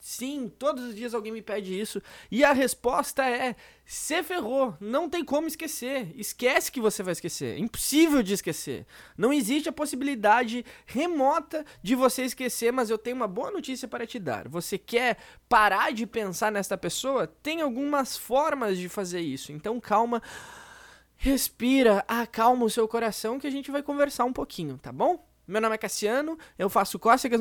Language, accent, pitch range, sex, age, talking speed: Portuguese, Brazilian, 200-255 Hz, male, 20-39, 175 wpm